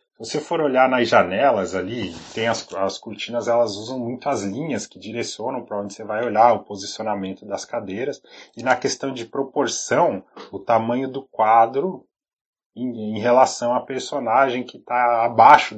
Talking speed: 165 wpm